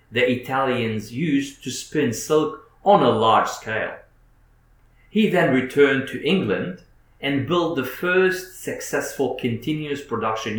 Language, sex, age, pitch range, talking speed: English, male, 40-59, 115-155 Hz, 125 wpm